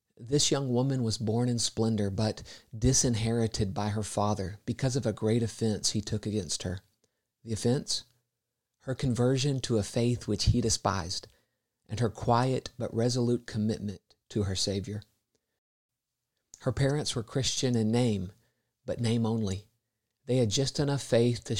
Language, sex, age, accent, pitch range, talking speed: English, male, 50-69, American, 105-120 Hz, 155 wpm